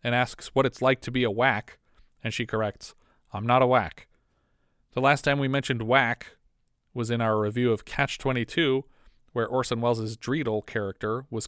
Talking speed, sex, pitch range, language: 180 wpm, male, 110-130 Hz, English